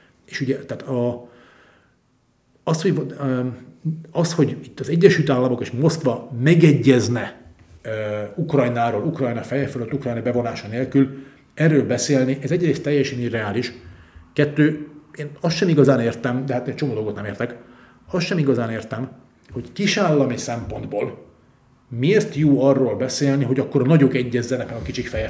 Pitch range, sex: 120-145 Hz, male